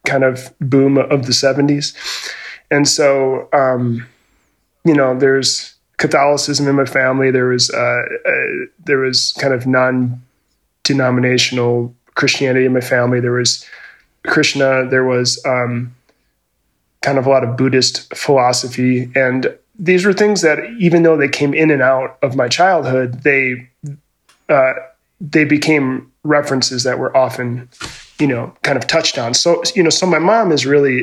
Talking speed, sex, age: 155 wpm, male, 20-39